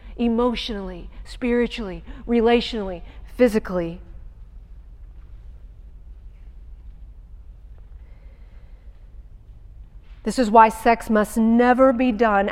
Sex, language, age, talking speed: female, English, 40-59, 60 wpm